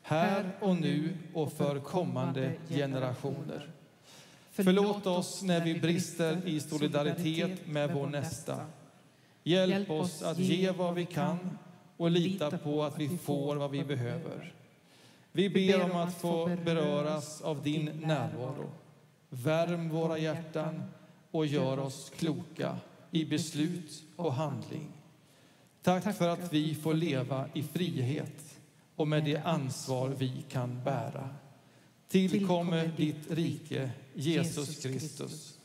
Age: 40-59